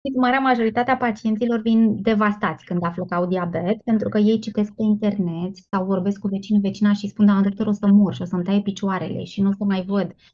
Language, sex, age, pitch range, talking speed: Romanian, female, 20-39, 195-225 Hz, 210 wpm